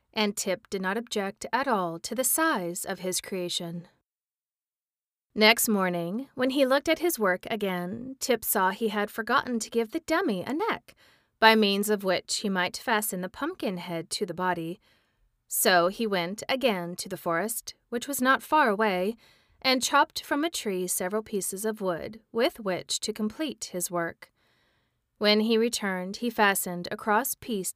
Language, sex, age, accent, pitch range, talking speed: English, female, 40-59, American, 185-235 Hz, 175 wpm